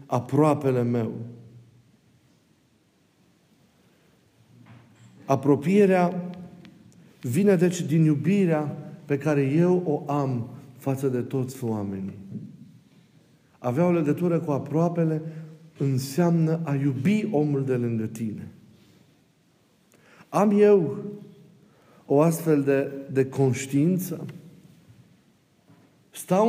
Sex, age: male, 50-69